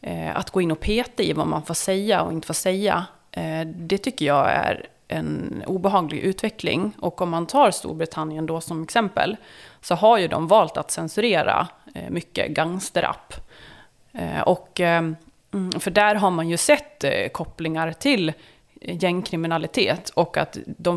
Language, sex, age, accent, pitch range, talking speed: Swedish, female, 30-49, native, 165-210 Hz, 145 wpm